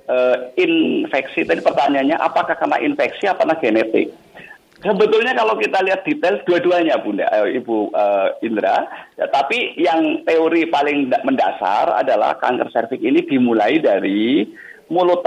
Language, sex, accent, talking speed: Indonesian, male, native, 130 wpm